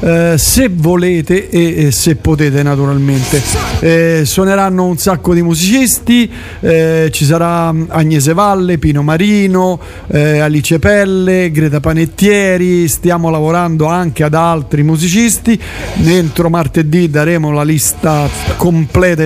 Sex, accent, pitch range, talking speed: male, native, 150-195 Hz, 120 wpm